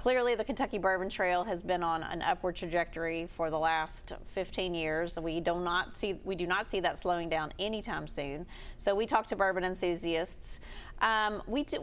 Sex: female